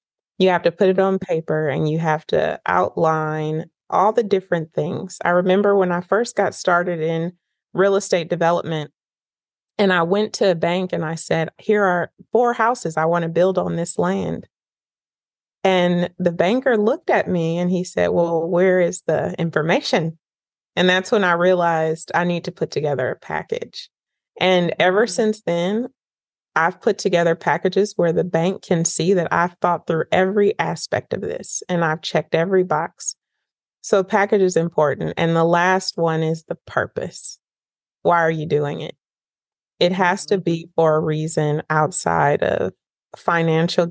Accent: American